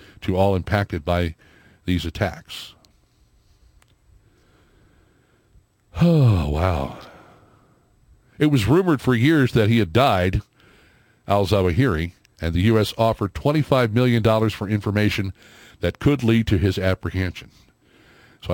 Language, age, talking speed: English, 60-79, 105 wpm